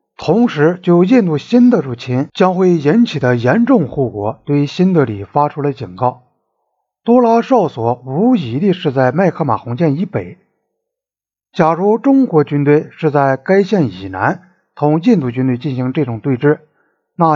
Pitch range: 130-200 Hz